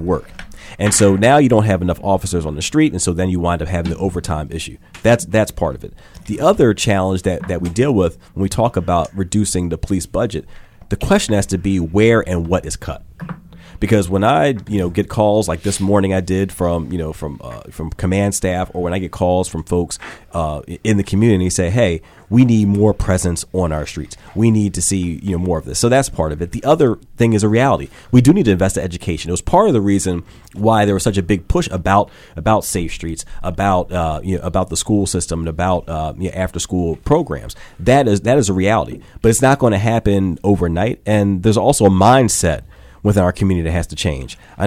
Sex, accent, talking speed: male, American, 240 wpm